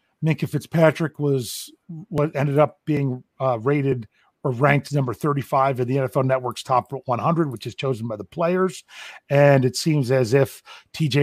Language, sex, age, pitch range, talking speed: English, male, 40-59, 130-175 Hz, 165 wpm